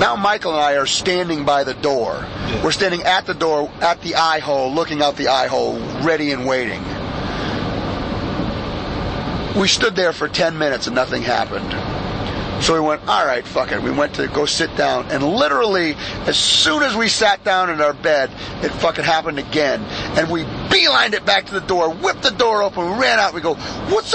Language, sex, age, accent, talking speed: English, male, 40-59, American, 200 wpm